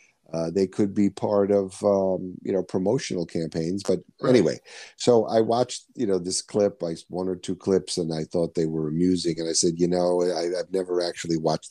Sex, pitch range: male, 75-90 Hz